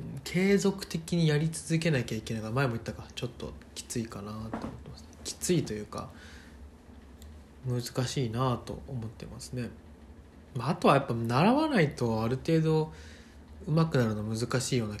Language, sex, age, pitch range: Japanese, male, 20-39, 85-140 Hz